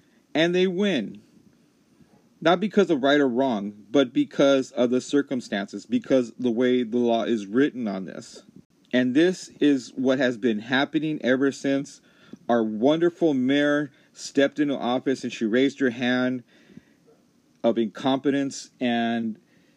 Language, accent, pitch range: English, American, 120-145 Hz